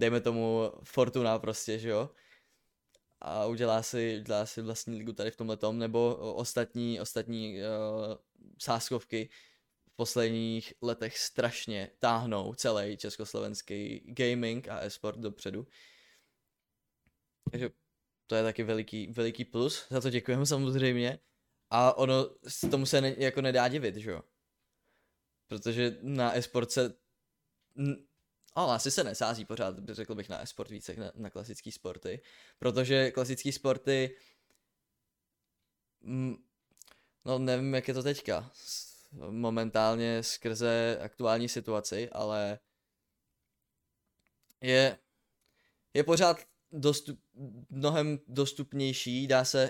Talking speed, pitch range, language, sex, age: 120 wpm, 110-130 Hz, Czech, male, 20-39